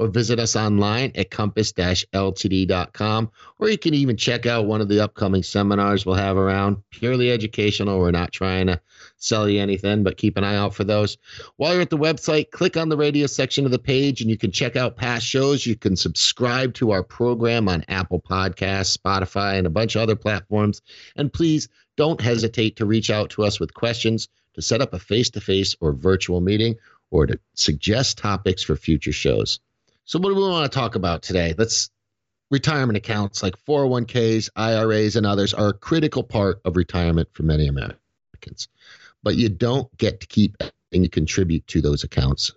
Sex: male